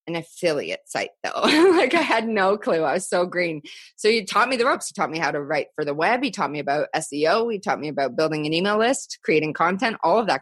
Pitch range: 155-215 Hz